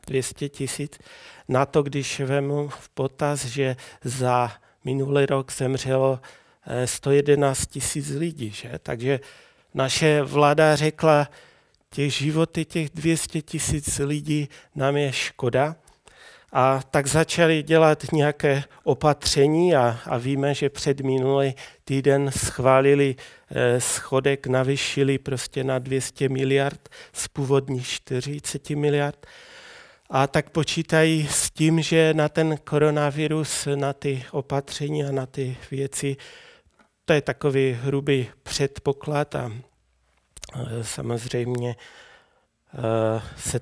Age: 40-59